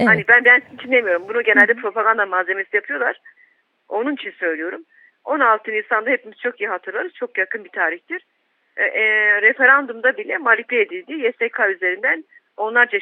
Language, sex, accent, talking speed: German, female, Turkish, 150 wpm